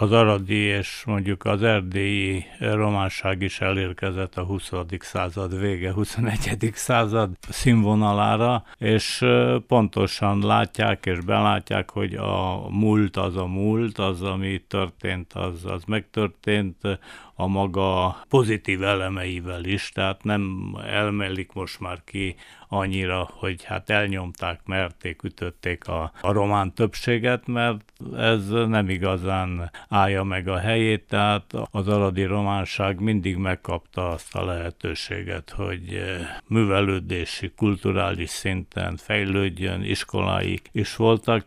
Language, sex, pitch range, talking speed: Hungarian, male, 95-105 Hz, 115 wpm